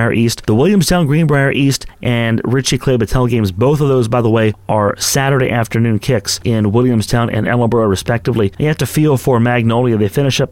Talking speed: 185 wpm